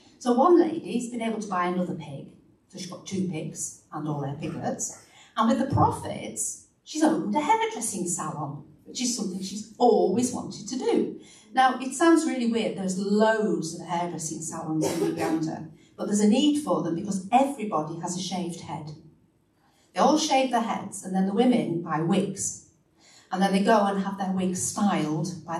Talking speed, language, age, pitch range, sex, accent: 190 wpm, English, 50-69, 170-255 Hz, female, British